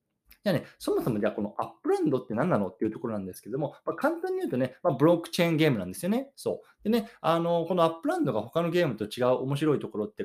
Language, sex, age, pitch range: Japanese, male, 20-39, 110-175 Hz